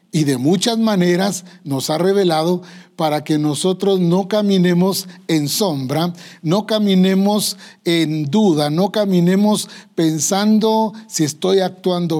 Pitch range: 150-195 Hz